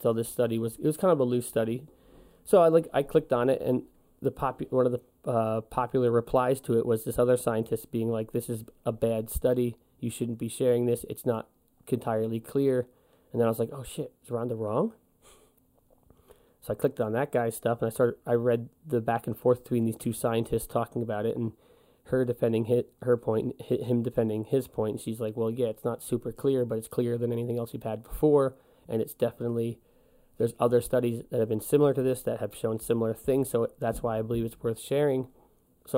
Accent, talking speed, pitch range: American, 230 wpm, 115-130 Hz